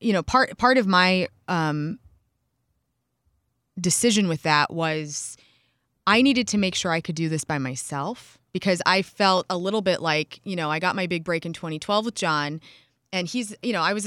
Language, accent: English, American